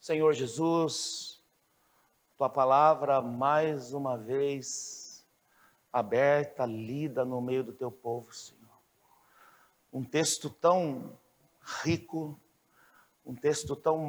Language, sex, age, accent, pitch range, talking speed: Portuguese, male, 60-79, Brazilian, 135-170 Hz, 95 wpm